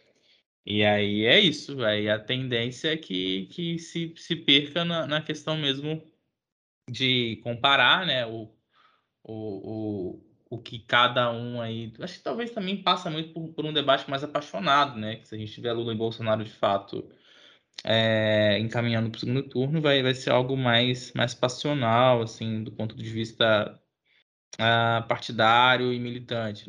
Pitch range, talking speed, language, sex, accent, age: 110-140 Hz, 165 wpm, Portuguese, male, Brazilian, 20-39